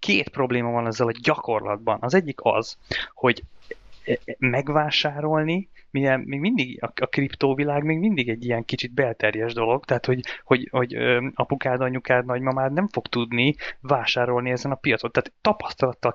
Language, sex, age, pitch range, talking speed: Hungarian, male, 20-39, 120-140 Hz, 140 wpm